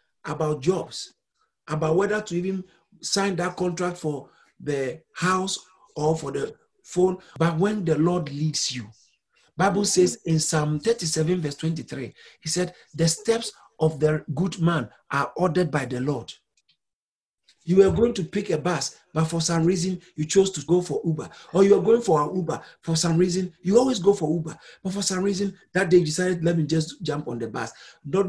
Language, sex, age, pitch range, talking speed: English, male, 50-69, 160-200 Hz, 190 wpm